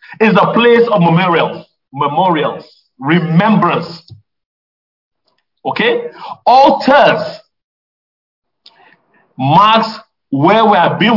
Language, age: English, 50-69